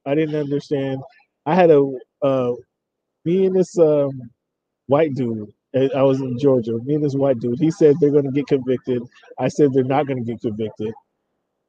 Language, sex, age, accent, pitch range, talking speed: English, male, 20-39, American, 120-150 Hz, 190 wpm